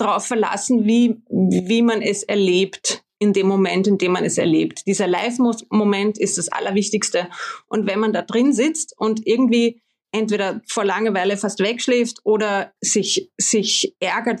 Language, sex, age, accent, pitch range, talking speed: German, female, 30-49, German, 195-230 Hz, 155 wpm